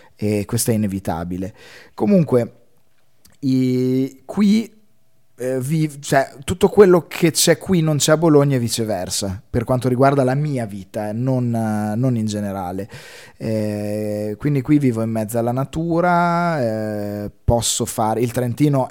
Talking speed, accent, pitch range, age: 145 wpm, native, 110-140 Hz, 20-39